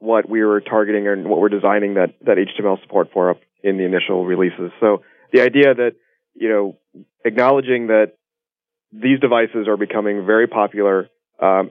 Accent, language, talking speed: American, English, 170 wpm